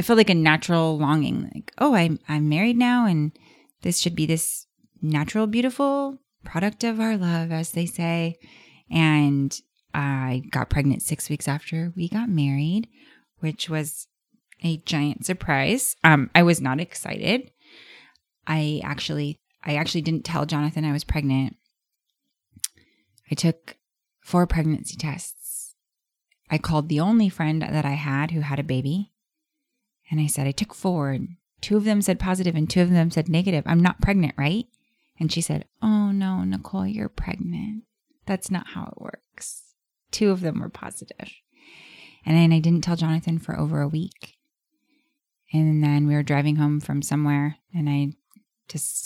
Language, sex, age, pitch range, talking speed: English, female, 20-39, 150-195 Hz, 165 wpm